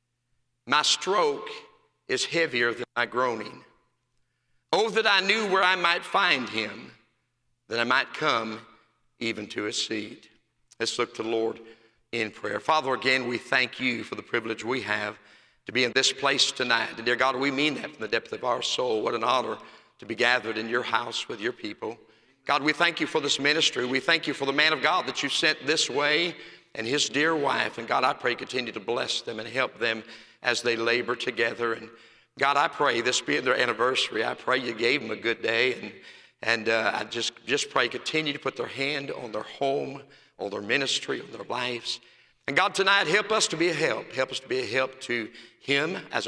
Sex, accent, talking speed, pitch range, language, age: male, American, 215 wpm, 120-155 Hz, English, 50-69